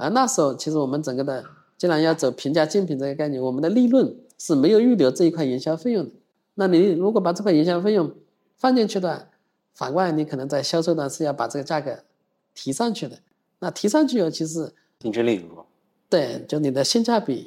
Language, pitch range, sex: Chinese, 130-175 Hz, male